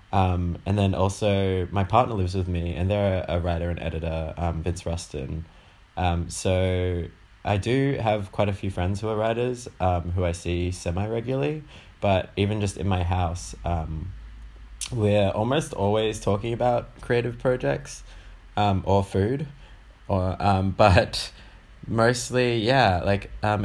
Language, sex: English, male